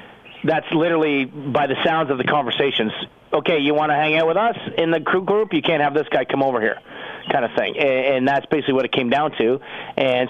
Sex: male